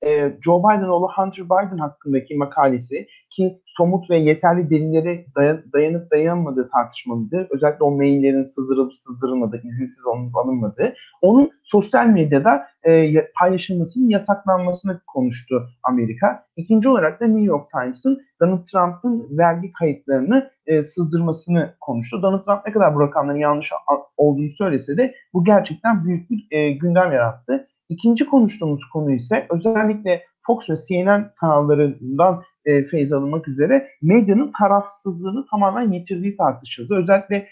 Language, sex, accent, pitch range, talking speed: Turkish, male, native, 145-200 Hz, 120 wpm